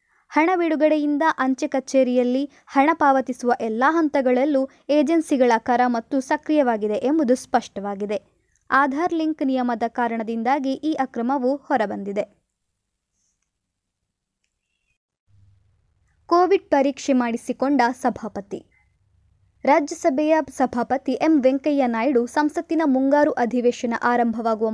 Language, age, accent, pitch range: Kannada, 20-39, native, 235-295 Hz